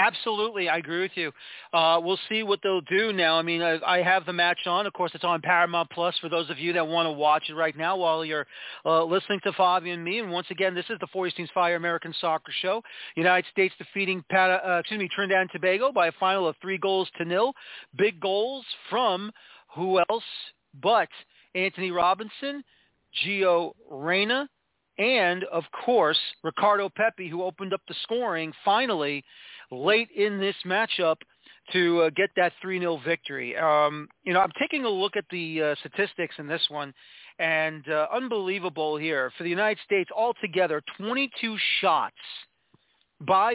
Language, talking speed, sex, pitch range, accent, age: English, 180 wpm, male, 165-195 Hz, American, 40-59